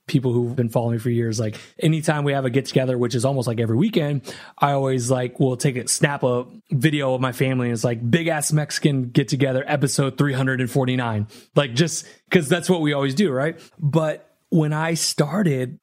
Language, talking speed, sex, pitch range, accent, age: English, 225 wpm, male, 135-195 Hz, American, 30-49